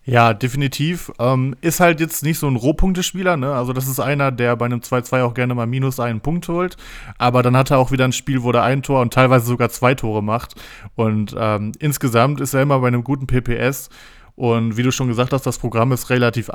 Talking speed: 230 wpm